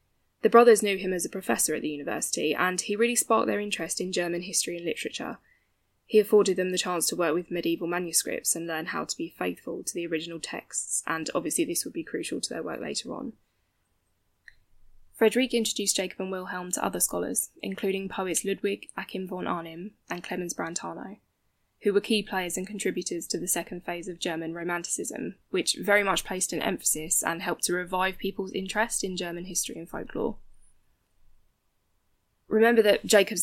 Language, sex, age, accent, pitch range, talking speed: English, female, 10-29, British, 170-205 Hz, 185 wpm